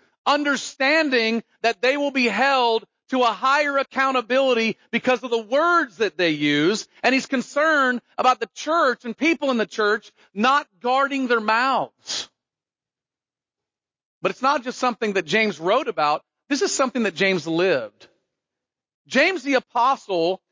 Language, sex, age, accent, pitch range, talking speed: English, male, 40-59, American, 215-275 Hz, 145 wpm